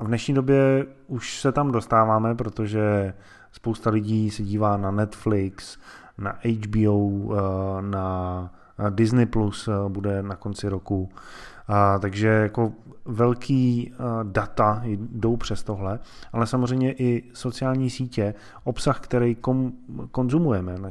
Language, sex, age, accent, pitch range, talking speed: Czech, male, 20-39, native, 105-125 Hz, 110 wpm